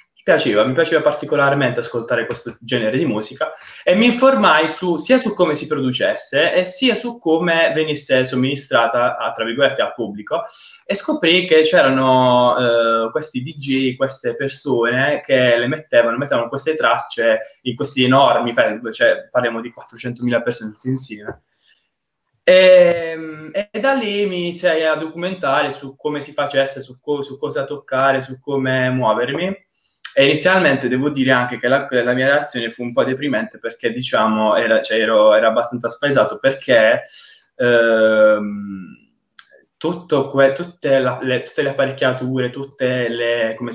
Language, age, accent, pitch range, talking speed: Italian, 20-39, native, 120-155 Hz, 145 wpm